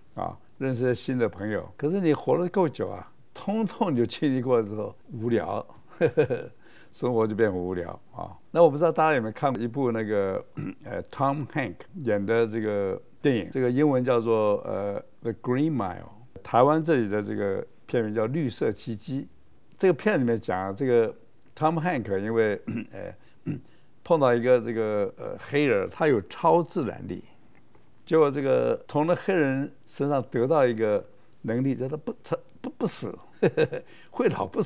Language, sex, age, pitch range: Chinese, male, 60-79, 115-155 Hz